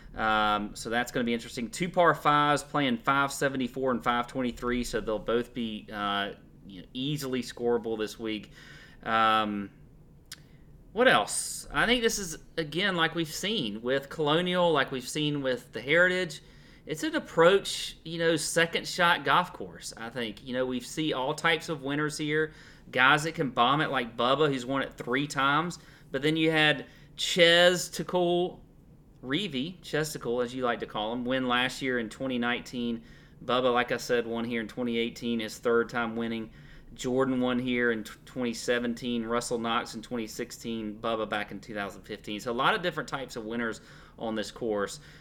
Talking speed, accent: 175 wpm, American